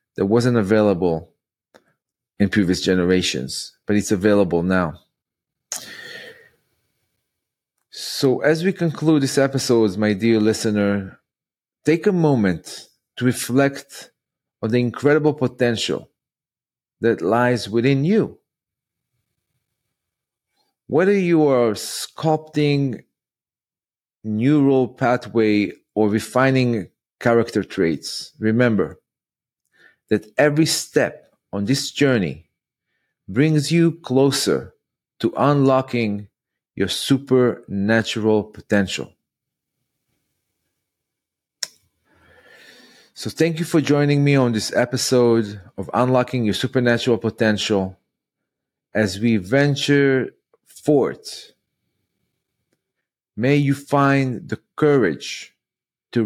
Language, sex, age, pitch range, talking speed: English, male, 40-59, 105-140 Hz, 85 wpm